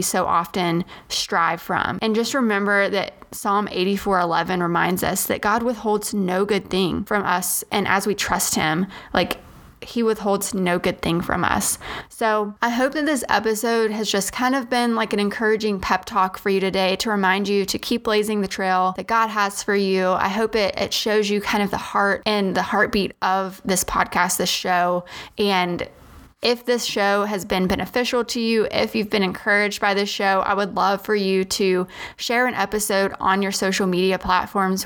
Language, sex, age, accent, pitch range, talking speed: English, female, 20-39, American, 190-225 Hz, 195 wpm